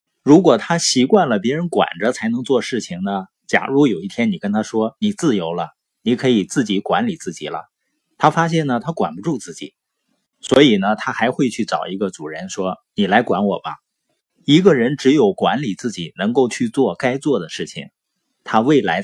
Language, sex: Chinese, male